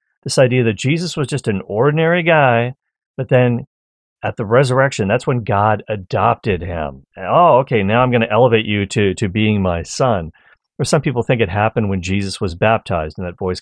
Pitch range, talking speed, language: 90-120 Hz, 200 wpm, English